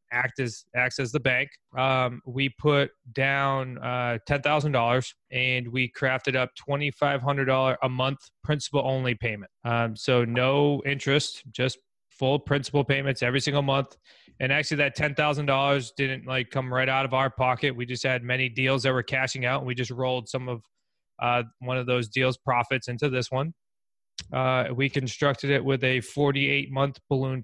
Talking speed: 170 wpm